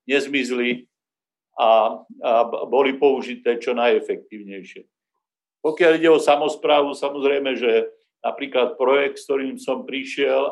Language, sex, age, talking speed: Slovak, male, 50-69, 110 wpm